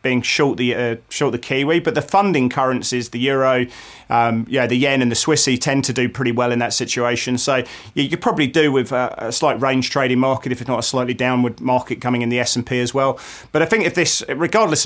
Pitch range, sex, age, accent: 120-145 Hz, male, 30-49, British